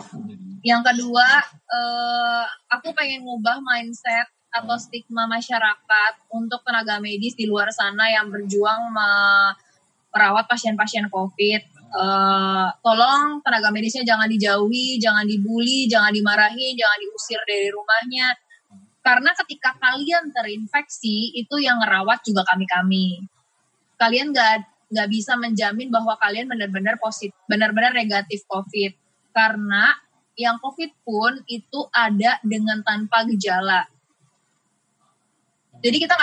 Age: 20-39